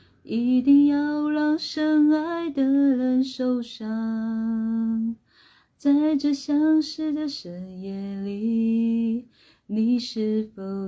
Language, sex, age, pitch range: Chinese, female, 30-49, 250-330 Hz